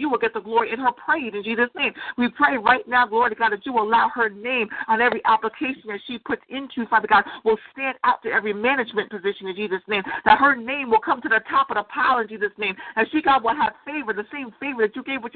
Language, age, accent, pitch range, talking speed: English, 50-69, American, 220-275 Hz, 270 wpm